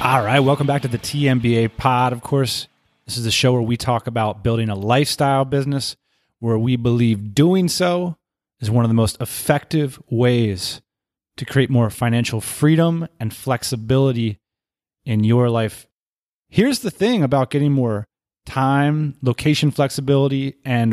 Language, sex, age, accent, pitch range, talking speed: English, male, 30-49, American, 120-150 Hz, 155 wpm